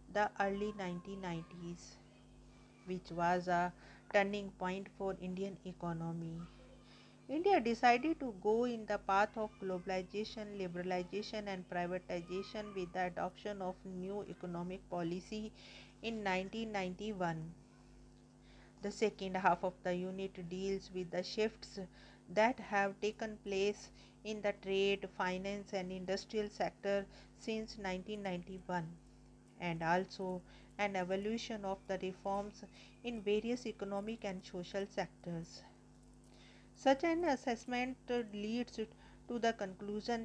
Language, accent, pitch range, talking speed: English, Indian, 185-210 Hz, 110 wpm